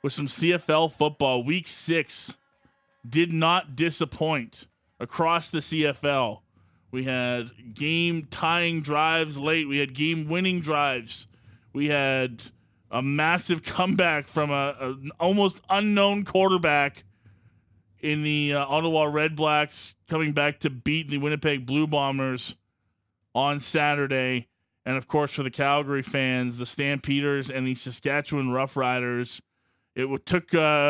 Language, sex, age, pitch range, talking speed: English, male, 20-39, 125-155 Hz, 125 wpm